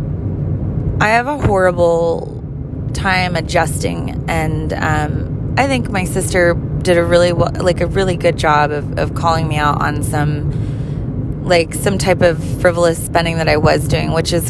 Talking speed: 165 wpm